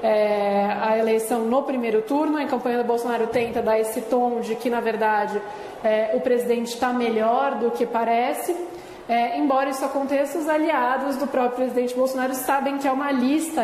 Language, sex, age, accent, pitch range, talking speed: Portuguese, female, 20-39, Brazilian, 235-270 Hz, 185 wpm